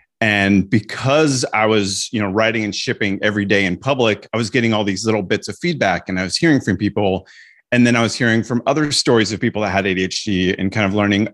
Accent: American